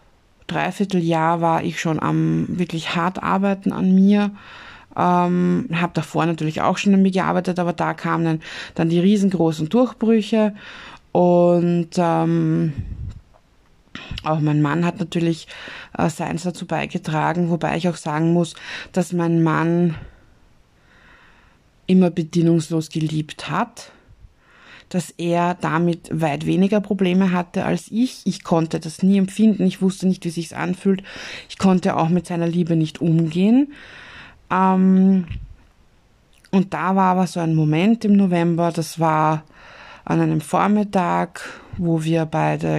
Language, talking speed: German, 135 wpm